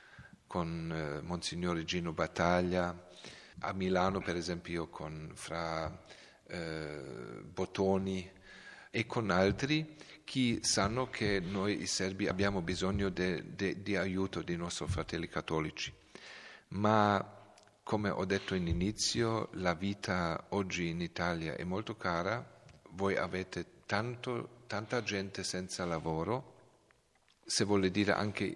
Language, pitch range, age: Italian, 85-100 Hz, 40-59